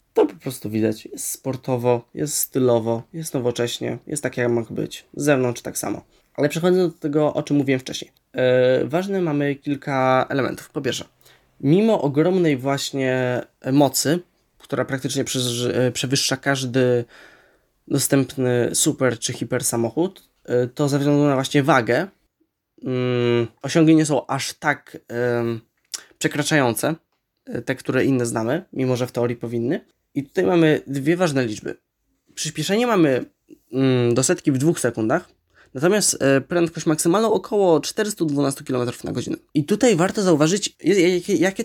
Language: Polish